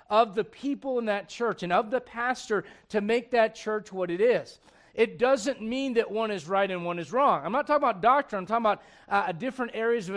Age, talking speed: 40-59, 235 wpm